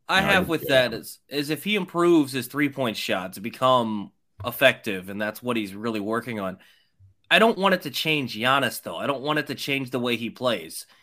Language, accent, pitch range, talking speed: English, American, 115-135 Hz, 225 wpm